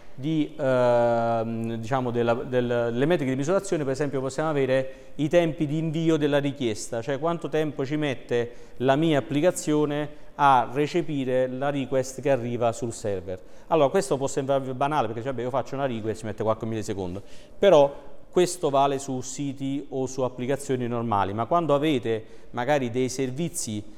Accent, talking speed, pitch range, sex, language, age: native, 160 wpm, 115-145 Hz, male, Italian, 40-59